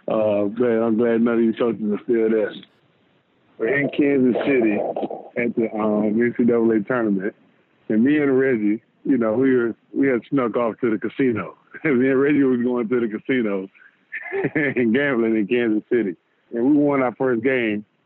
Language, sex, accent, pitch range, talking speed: English, male, American, 115-145 Hz, 175 wpm